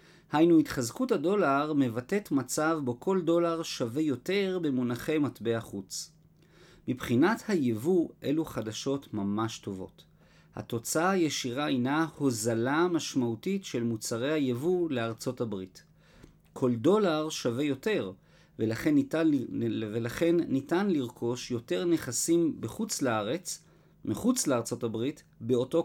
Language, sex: Hebrew, male